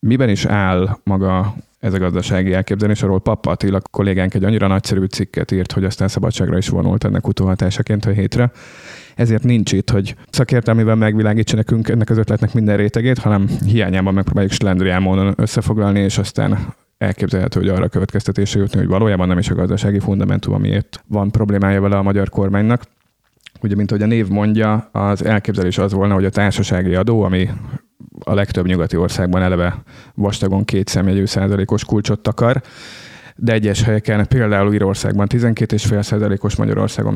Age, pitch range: 30-49, 95-115 Hz